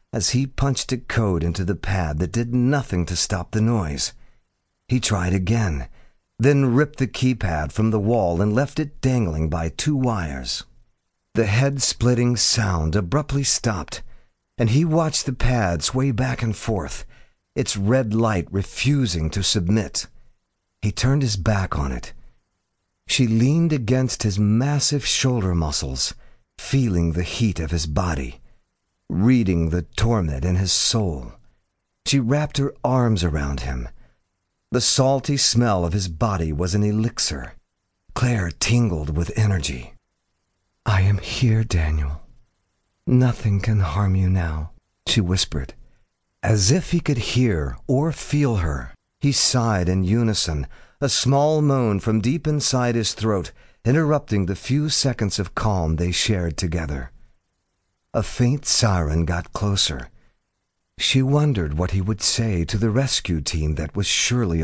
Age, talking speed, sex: 50-69, 145 wpm, male